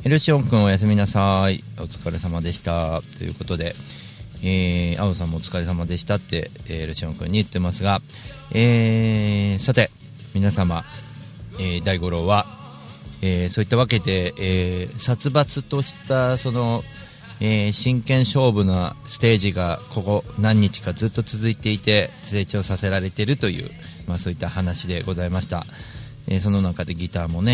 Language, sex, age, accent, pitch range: Japanese, male, 40-59, native, 90-120 Hz